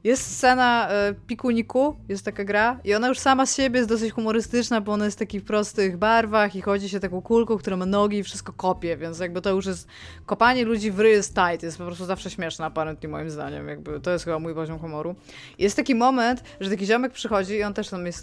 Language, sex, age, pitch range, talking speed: Polish, female, 20-39, 180-235 Hz, 240 wpm